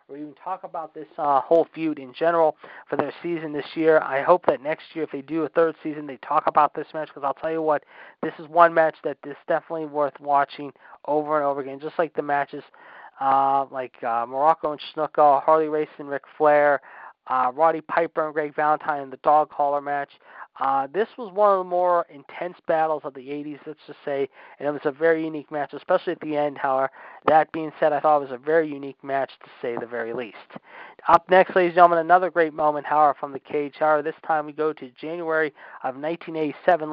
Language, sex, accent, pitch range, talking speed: English, male, American, 140-165 Hz, 225 wpm